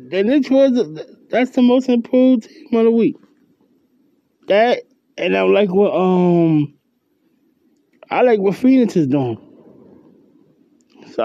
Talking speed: 130 wpm